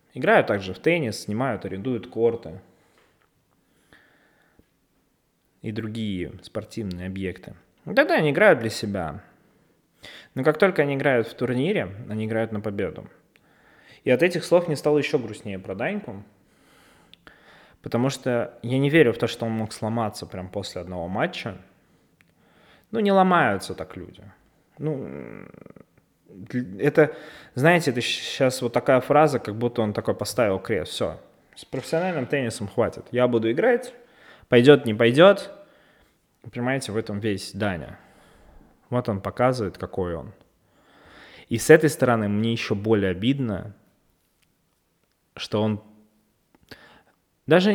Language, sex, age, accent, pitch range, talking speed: Russian, male, 20-39, native, 105-145 Hz, 130 wpm